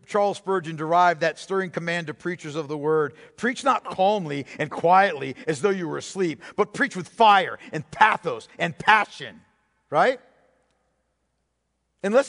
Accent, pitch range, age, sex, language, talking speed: American, 165-245 Hz, 50-69, male, English, 150 wpm